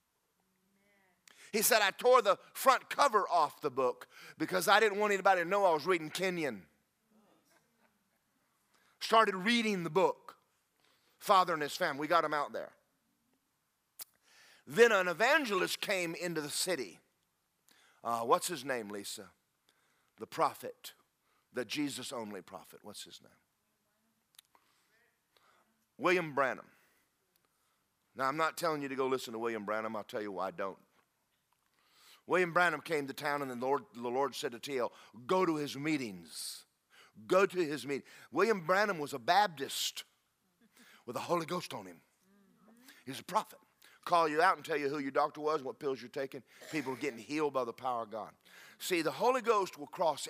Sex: male